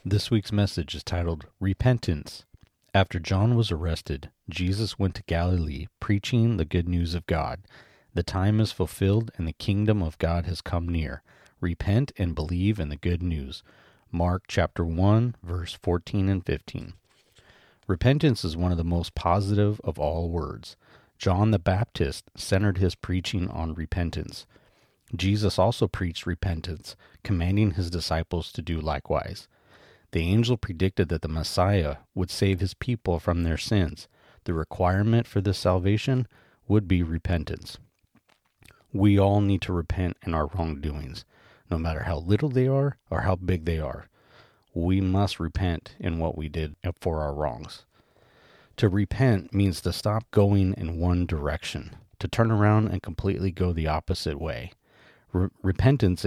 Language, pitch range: English, 85-100 Hz